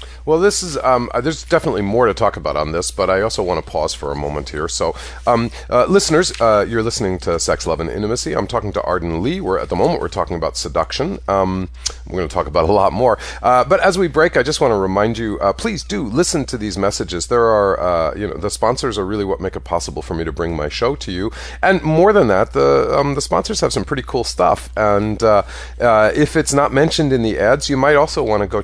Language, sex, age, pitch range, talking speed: English, male, 40-59, 85-140 Hz, 260 wpm